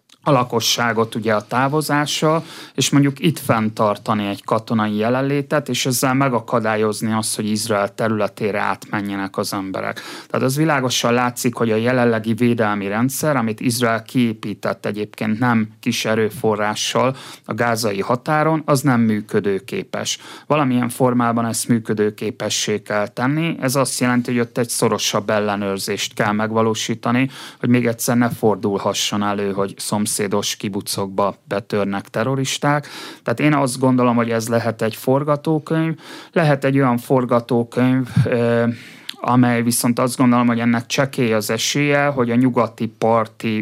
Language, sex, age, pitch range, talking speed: Hungarian, male, 30-49, 110-130 Hz, 135 wpm